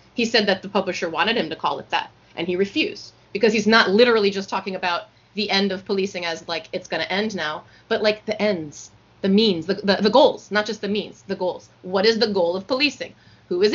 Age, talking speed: 30-49, 245 wpm